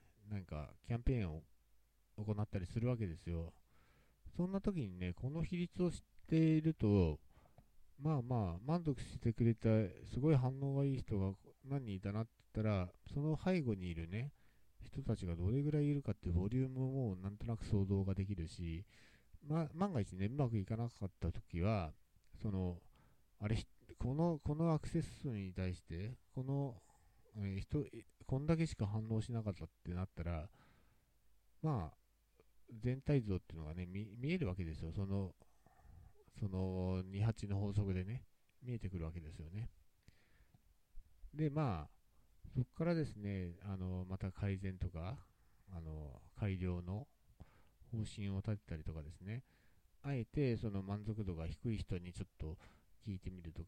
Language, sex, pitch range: Japanese, male, 90-125 Hz